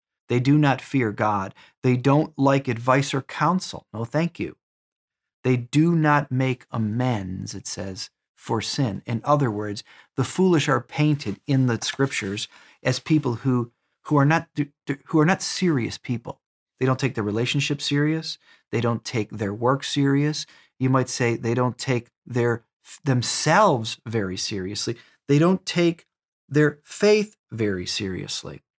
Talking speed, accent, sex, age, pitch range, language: 150 wpm, American, male, 40-59, 115-145 Hz, English